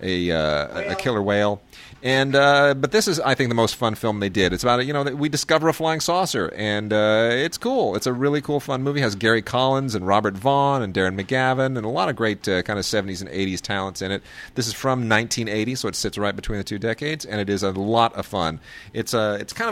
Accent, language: American, English